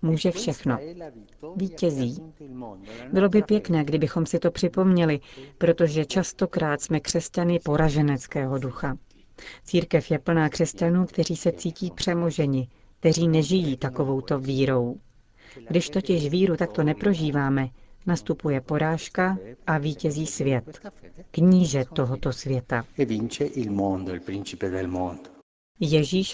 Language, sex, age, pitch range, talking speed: Czech, female, 40-59, 135-170 Hz, 95 wpm